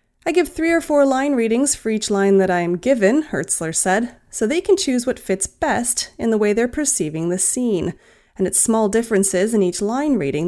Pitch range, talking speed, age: 180-265 Hz, 220 wpm, 30-49